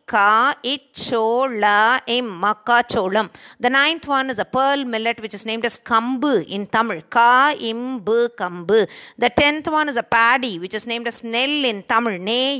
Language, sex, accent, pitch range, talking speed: Tamil, female, native, 215-265 Hz, 165 wpm